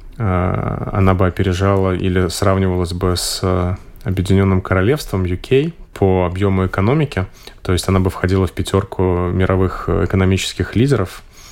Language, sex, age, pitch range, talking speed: Russian, male, 20-39, 90-100 Hz, 120 wpm